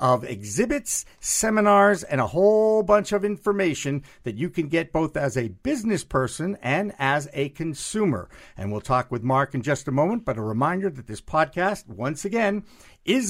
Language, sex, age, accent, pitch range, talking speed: English, male, 50-69, American, 135-205 Hz, 180 wpm